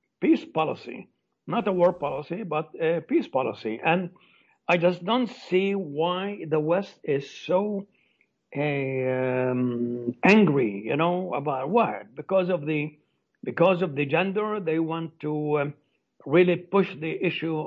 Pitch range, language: 140-180 Hz, English